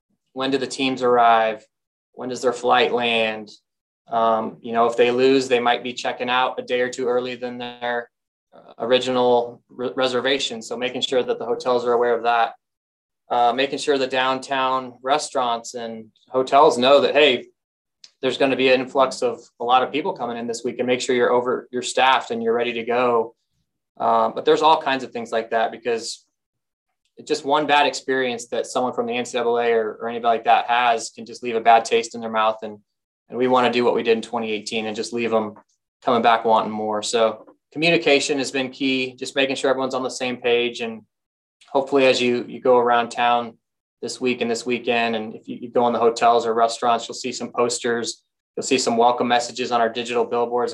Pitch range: 115-130 Hz